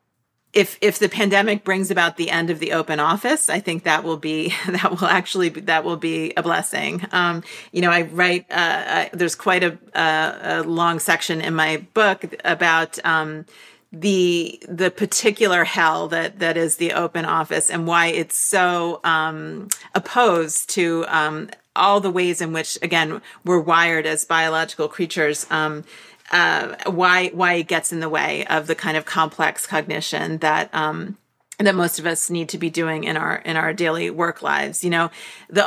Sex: female